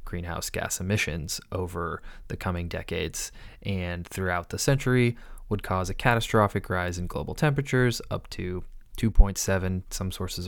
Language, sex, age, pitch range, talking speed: English, male, 20-39, 90-105 Hz, 135 wpm